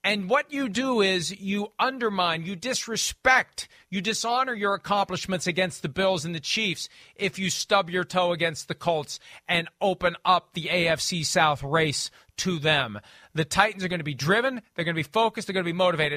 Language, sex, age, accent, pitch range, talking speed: English, male, 40-59, American, 150-195 Hz, 195 wpm